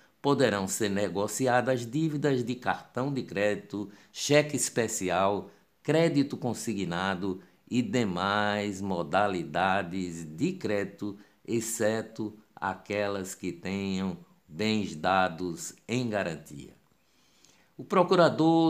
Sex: male